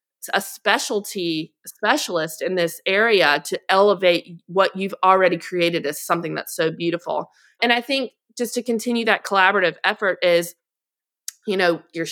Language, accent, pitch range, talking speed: English, American, 175-215 Hz, 150 wpm